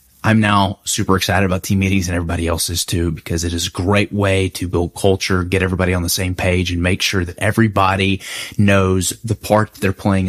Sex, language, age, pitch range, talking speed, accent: male, English, 20-39, 95-125 Hz, 220 wpm, American